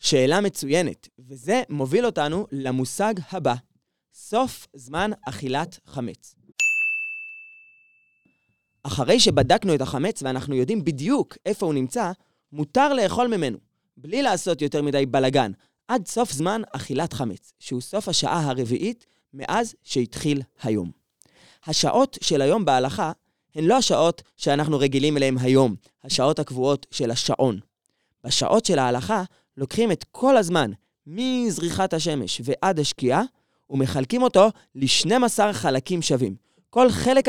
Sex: male